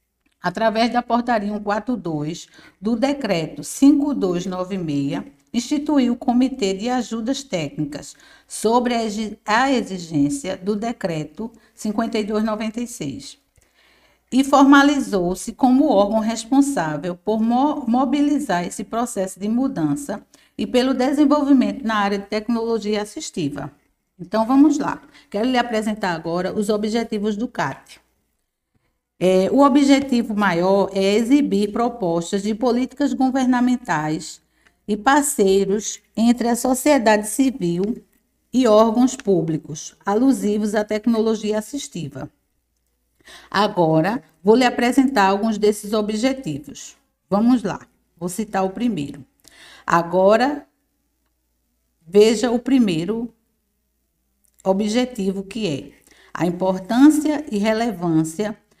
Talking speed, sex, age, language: 95 wpm, female, 50-69, Portuguese